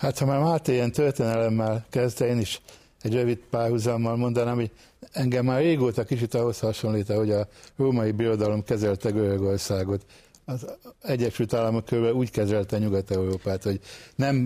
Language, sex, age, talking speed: Hungarian, male, 60-79, 150 wpm